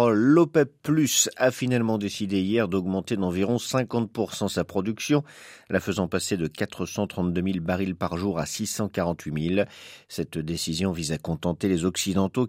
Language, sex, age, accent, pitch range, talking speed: French, male, 50-69, French, 95-140 Hz, 145 wpm